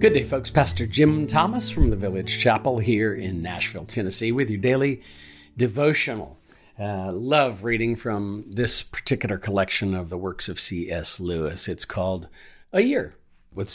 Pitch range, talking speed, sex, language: 100-135 Hz, 155 wpm, male, English